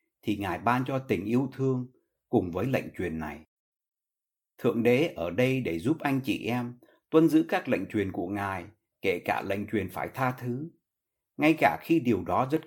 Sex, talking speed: male, 195 wpm